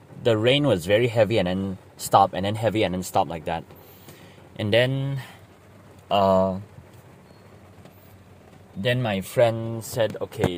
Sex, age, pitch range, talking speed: male, 20-39, 95-120 Hz, 135 wpm